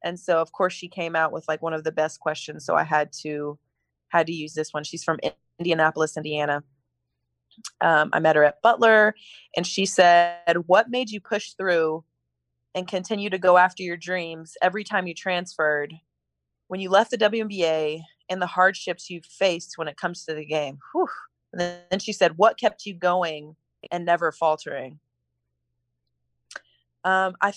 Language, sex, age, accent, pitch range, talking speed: English, female, 20-39, American, 150-185 Hz, 180 wpm